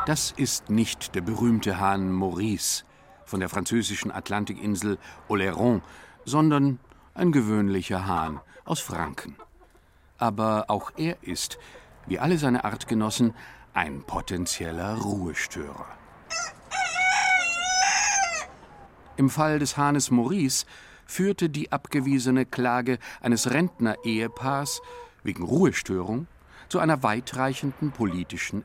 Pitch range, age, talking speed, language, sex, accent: 100-145 Hz, 50-69, 95 wpm, German, male, German